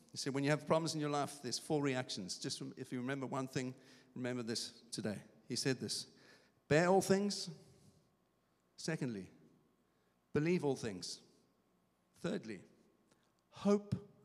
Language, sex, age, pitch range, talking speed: English, male, 50-69, 120-155 Hz, 140 wpm